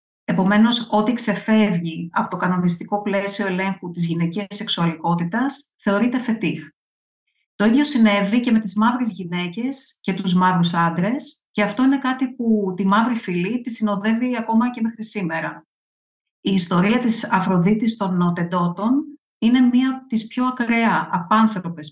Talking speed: 140 wpm